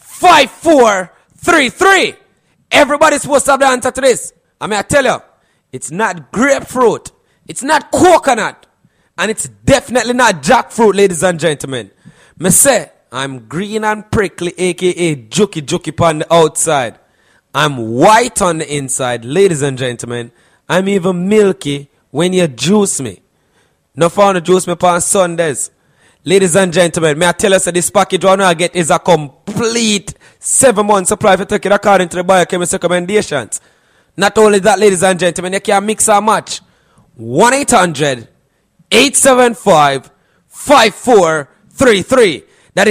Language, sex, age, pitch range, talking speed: English, male, 30-49, 170-240 Hz, 135 wpm